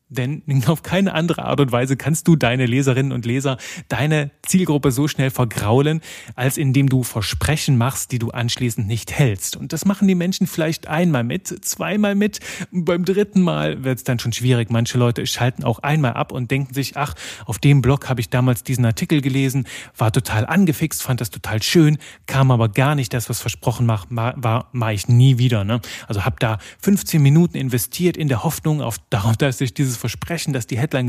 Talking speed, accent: 195 wpm, German